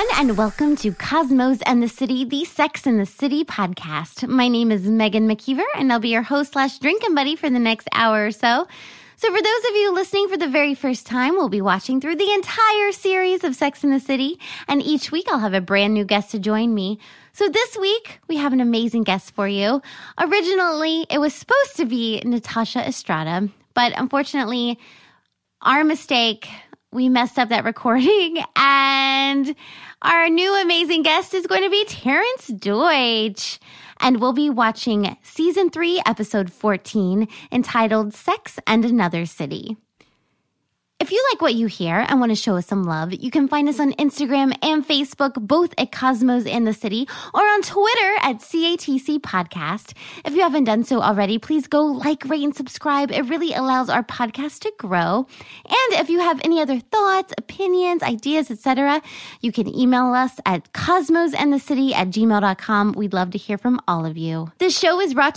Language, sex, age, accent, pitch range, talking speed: English, female, 20-39, American, 225-320 Hz, 185 wpm